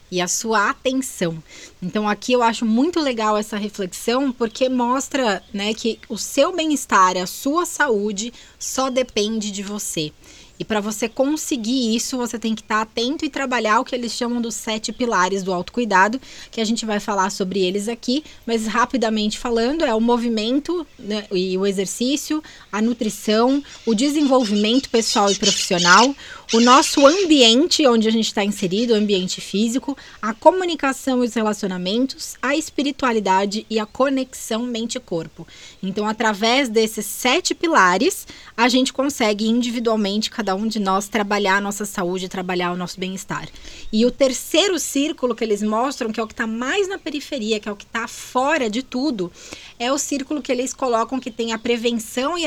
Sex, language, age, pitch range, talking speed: female, Portuguese, 20-39, 210-265 Hz, 170 wpm